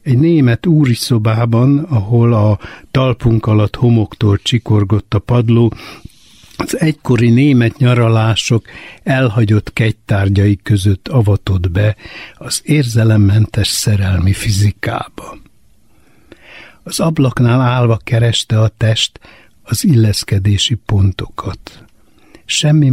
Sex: male